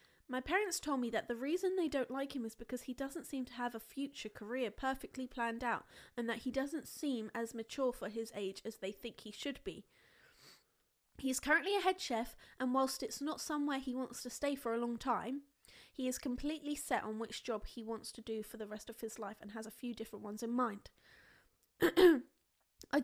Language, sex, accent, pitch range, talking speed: English, female, British, 235-275 Hz, 220 wpm